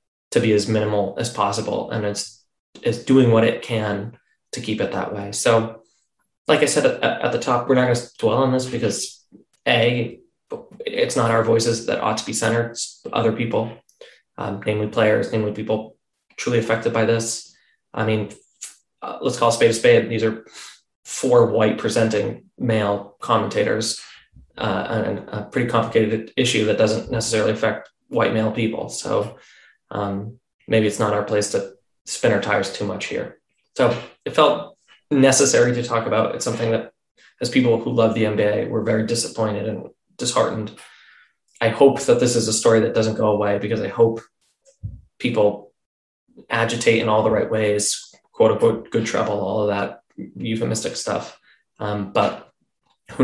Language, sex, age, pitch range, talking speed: English, male, 20-39, 105-115 Hz, 170 wpm